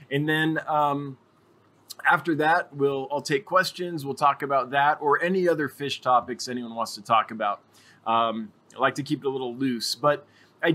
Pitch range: 120-165 Hz